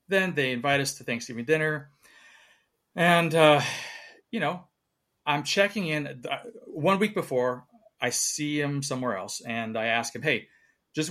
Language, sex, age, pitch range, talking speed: English, male, 30-49, 130-170 Hz, 150 wpm